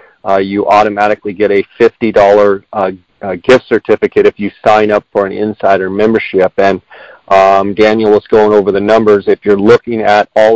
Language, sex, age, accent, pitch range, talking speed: English, male, 40-59, American, 100-115 Hz, 175 wpm